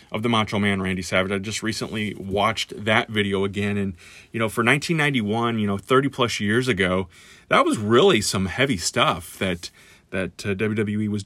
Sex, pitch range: male, 100-115 Hz